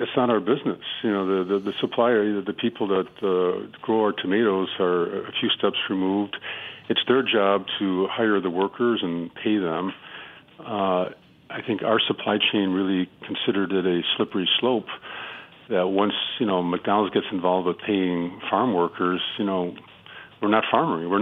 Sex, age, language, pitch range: male, 50-69, English, 90-105 Hz